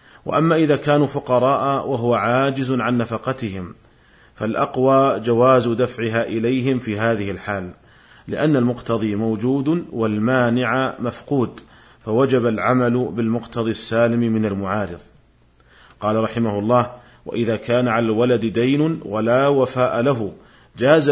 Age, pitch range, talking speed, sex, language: 40-59, 110-130 Hz, 110 wpm, male, Arabic